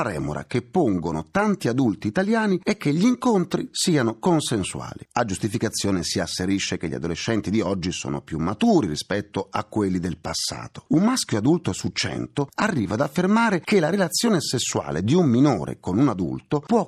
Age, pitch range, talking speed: 40-59, 95-155 Hz, 170 wpm